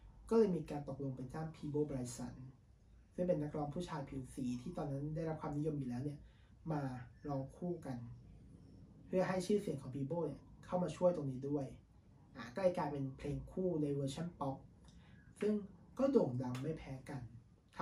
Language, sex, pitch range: Thai, male, 130-165 Hz